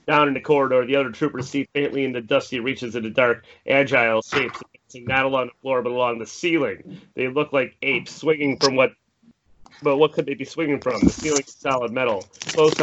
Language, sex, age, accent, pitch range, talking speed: English, male, 30-49, American, 120-145 Hz, 210 wpm